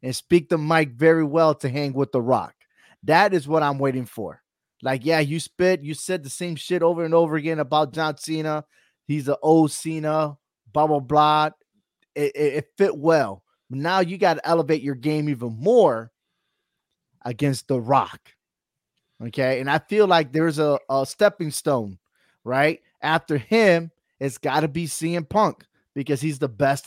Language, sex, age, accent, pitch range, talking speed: English, male, 20-39, American, 135-160 Hz, 180 wpm